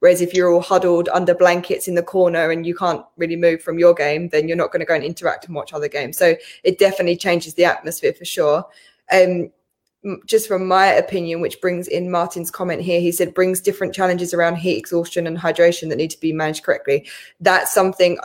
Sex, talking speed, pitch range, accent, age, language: female, 220 wpm, 170-185 Hz, British, 20-39, English